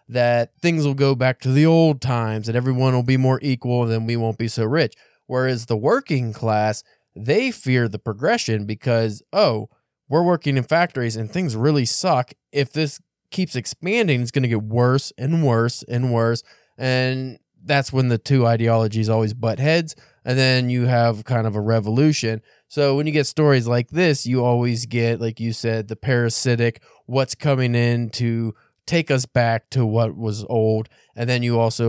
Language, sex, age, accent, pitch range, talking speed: English, male, 20-39, American, 115-145 Hz, 190 wpm